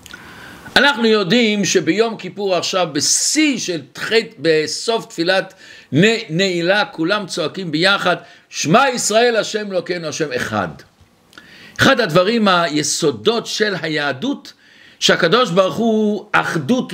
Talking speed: 115 wpm